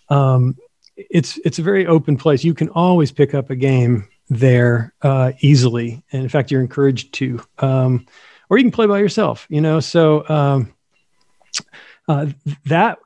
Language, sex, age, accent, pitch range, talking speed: English, male, 50-69, American, 130-155 Hz, 165 wpm